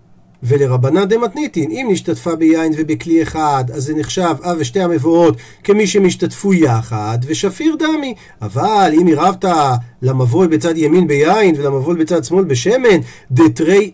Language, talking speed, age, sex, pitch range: Hebrew, 140 wpm, 40-59, male, 145-215 Hz